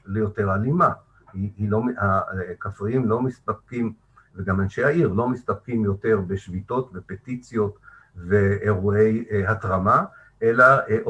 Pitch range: 100-120 Hz